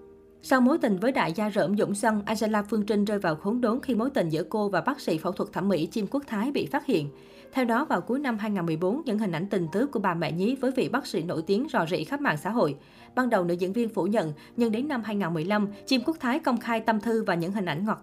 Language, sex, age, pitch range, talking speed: Vietnamese, female, 20-39, 180-230 Hz, 280 wpm